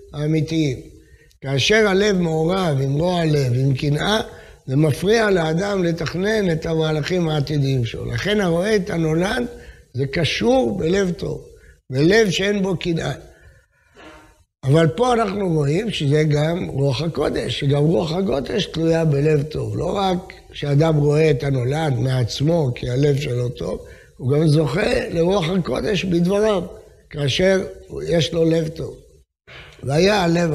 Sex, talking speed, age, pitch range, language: male, 130 wpm, 60-79, 140-190 Hz, English